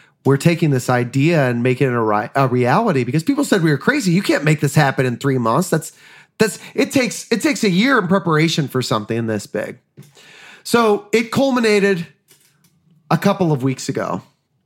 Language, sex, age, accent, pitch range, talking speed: English, male, 30-49, American, 110-155 Hz, 190 wpm